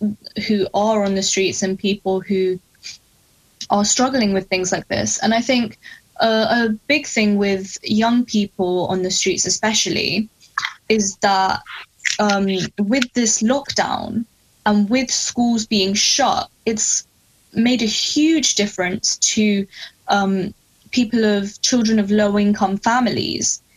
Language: English